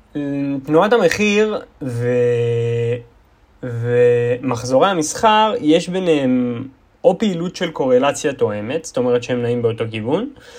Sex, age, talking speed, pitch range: male, 20-39, 100 wpm, 120-205 Hz